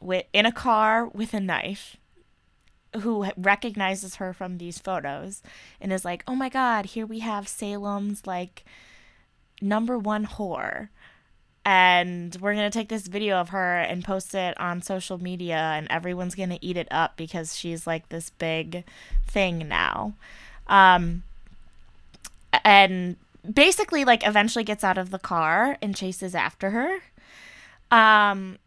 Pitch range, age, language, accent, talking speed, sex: 175-215 Hz, 20-39, English, American, 145 wpm, female